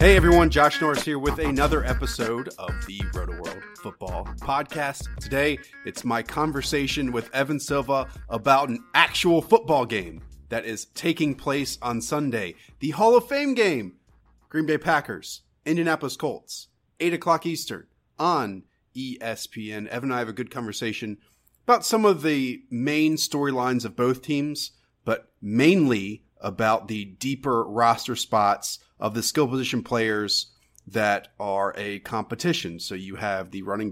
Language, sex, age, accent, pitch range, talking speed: English, male, 30-49, American, 105-150 Hz, 145 wpm